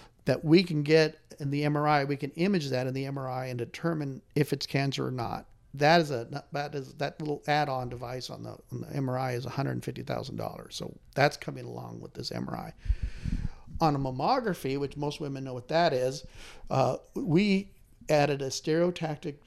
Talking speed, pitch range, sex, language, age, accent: 180 wpm, 125-150 Hz, male, English, 50-69, American